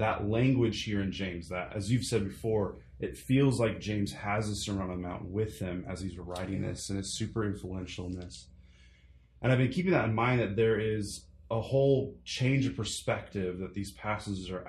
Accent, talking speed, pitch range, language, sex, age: American, 210 wpm, 90-110 Hz, English, male, 20-39